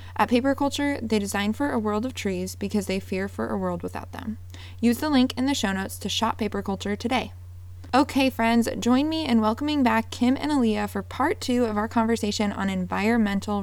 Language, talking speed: English, 210 wpm